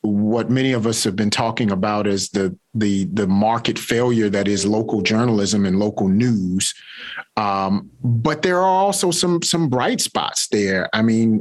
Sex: male